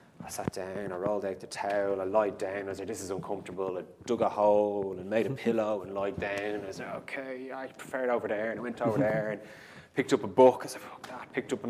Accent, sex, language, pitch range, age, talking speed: Irish, male, English, 105-140 Hz, 20-39, 275 wpm